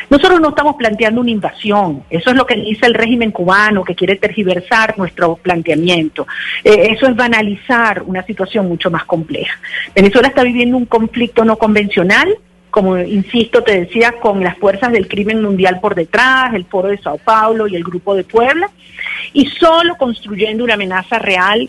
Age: 40-59